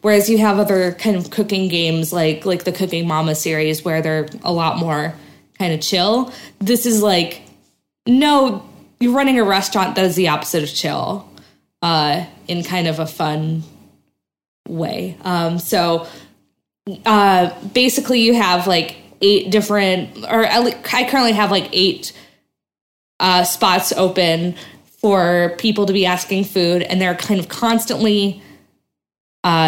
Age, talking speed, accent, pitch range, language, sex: 20-39, 150 wpm, American, 170-210 Hz, English, female